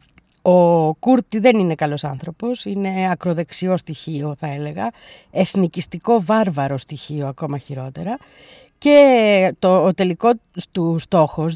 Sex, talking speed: female, 115 wpm